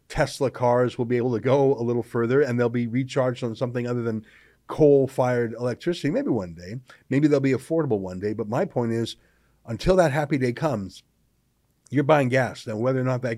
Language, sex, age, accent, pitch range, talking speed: English, male, 50-69, American, 120-155 Hz, 205 wpm